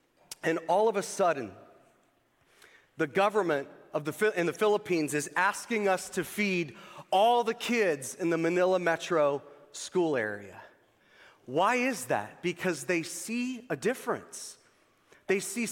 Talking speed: 135 wpm